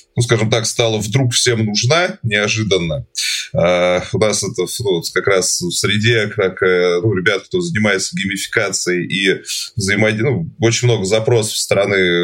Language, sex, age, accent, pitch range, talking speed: Russian, male, 20-39, native, 95-120 Hz, 155 wpm